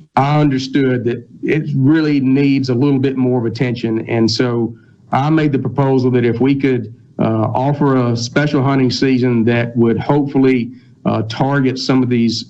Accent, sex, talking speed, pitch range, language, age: American, male, 175 wpm, 115-140 Hz, English, 50-69